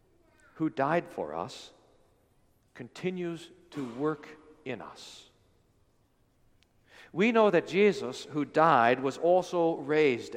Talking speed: 105 wpm